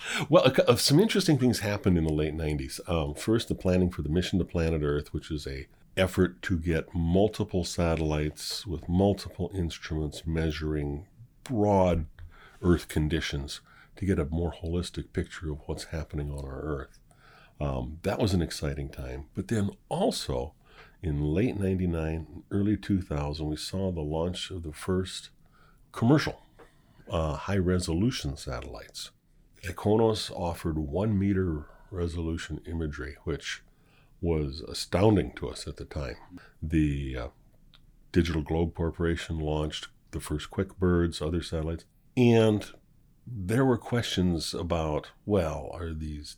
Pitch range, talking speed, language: 75-100 Hz, 135 wpm, English